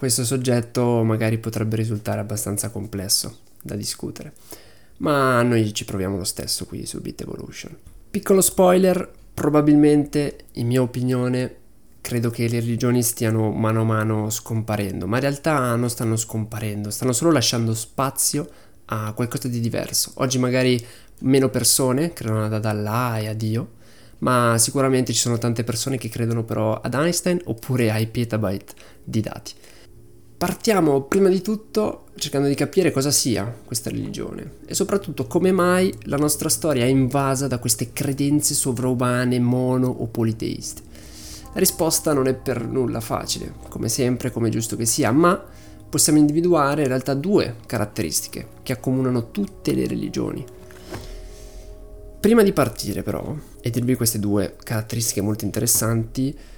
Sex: male